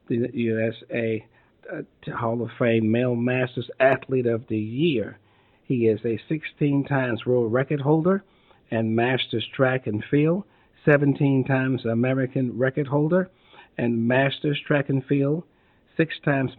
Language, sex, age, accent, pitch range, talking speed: English, male, 50-69, American, 120-145 Hz, 120 wpm